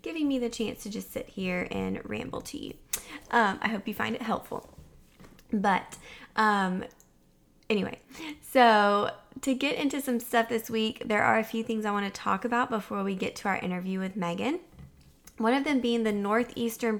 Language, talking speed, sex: English, 190 wpm, female